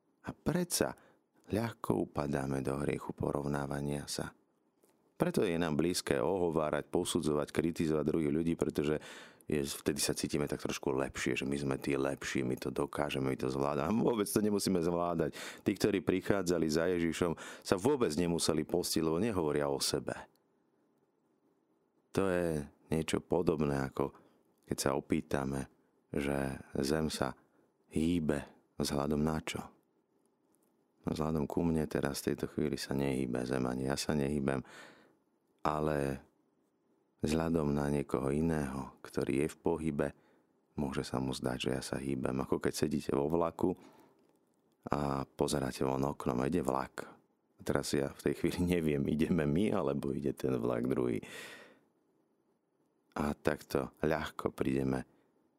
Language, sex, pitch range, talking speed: Slovak, male, 70-80 Hz, 140 wpm